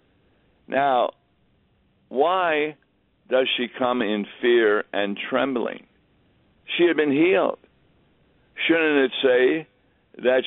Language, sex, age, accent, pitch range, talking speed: English, male, 60-79, American, 105-135 Hz, 95 wpm